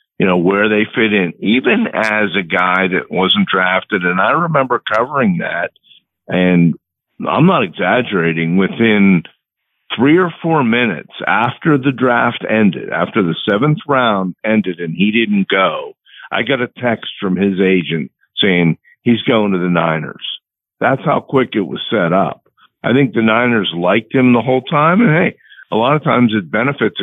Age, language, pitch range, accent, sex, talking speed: 50-69, English, 90-115 Hz, American, male, 170 wpm